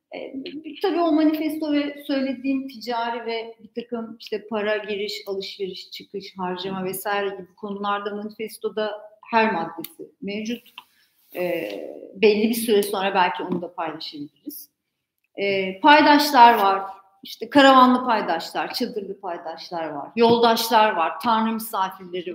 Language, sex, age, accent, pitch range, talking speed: Turkish, female, 40-59, native, 200-270 Hz, 120 wpm